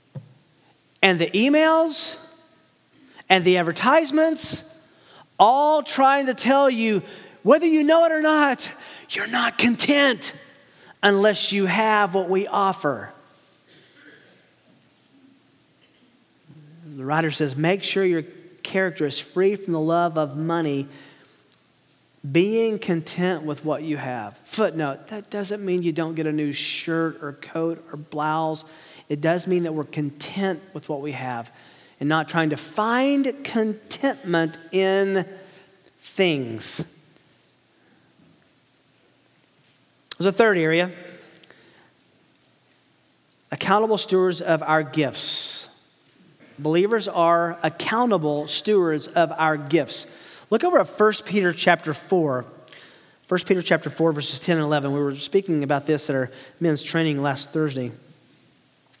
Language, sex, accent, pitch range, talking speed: English, male, American, 150-205 Hz, 120 wpm